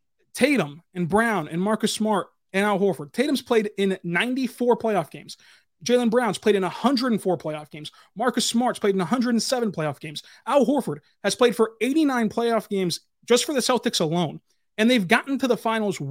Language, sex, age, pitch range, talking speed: English, male, 30-49, 170-220 Hz, 180 wpm